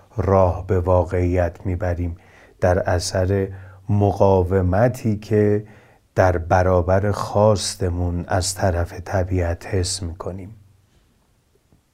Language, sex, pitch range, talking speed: Persian, male, 95-110 Hz, 80 wpm